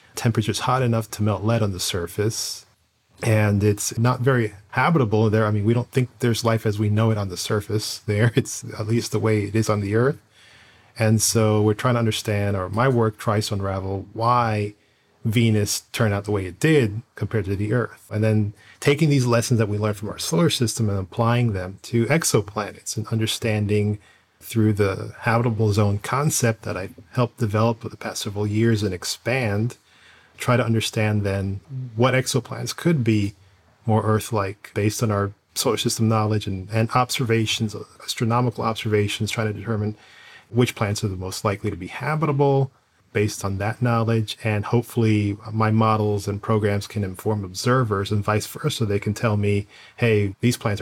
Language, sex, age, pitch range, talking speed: English, male, 40-59, 105-120 Hz, 185 wpm